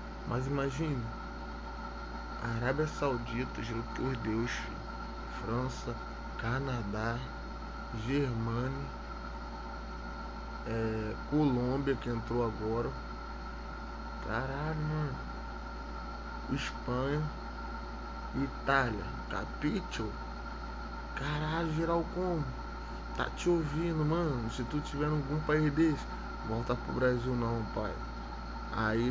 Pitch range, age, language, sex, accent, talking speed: 115-135 Hz, 20-39, English, male, Brazilian, 80 wpm